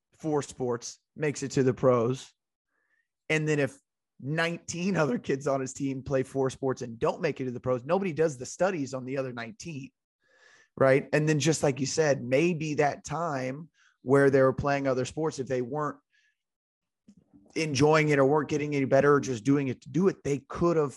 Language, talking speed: English, 195 wpm